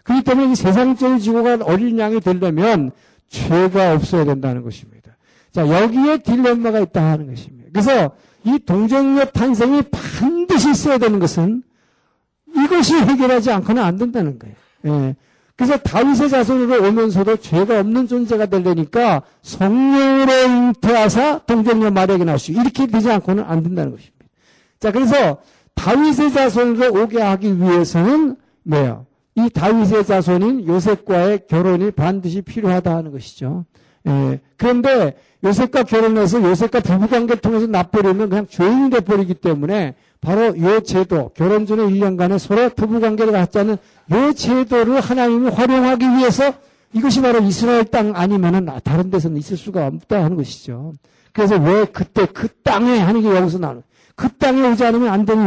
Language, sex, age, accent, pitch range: Korean, male, 50-69, native, 180-245 Hz